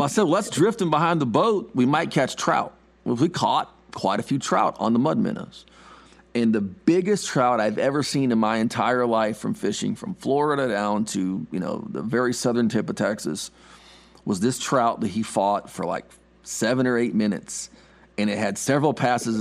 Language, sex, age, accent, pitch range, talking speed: English, male, 40-59, American, 105-135 Hz, 205 wpm